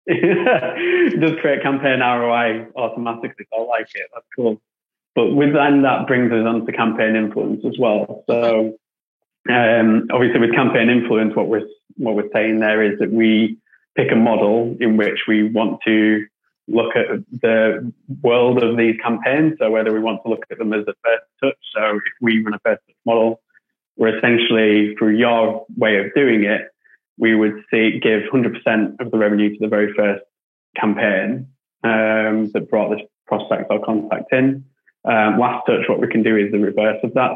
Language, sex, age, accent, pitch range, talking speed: English, male, 20-39, British, 110-115 Hz, 185 wpm